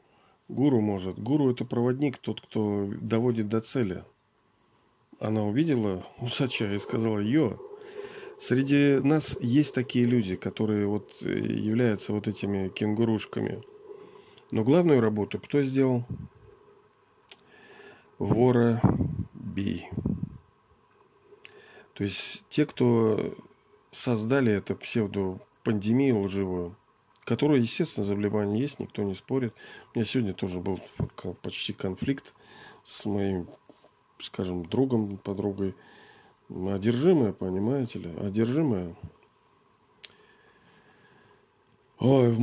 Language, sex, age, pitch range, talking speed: Russian, male, 40-59, 100-130 Hz, 90 wpm